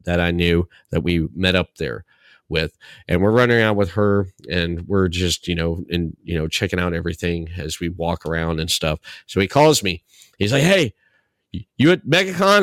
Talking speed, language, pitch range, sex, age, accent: 200 wpm, English, 95-140 Hz, male, 30-49, American